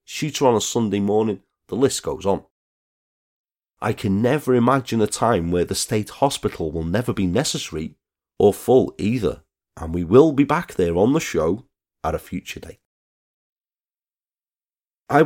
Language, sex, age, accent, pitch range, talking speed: English, male, 30-49, British, 95-145 Hz, 155 wpm